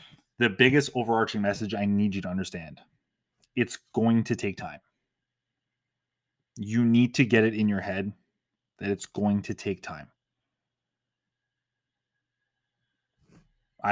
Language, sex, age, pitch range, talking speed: English, male, 20-39, 100-125 Hz, 125 wpm